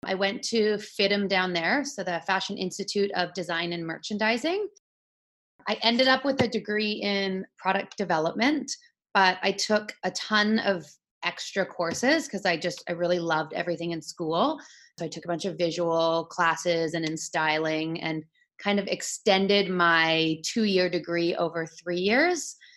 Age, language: 30-49, English